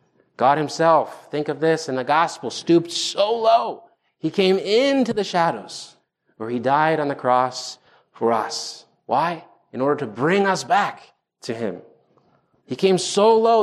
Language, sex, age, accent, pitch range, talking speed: English, male, 30-49, American, 120-170 Hz, 165 wpm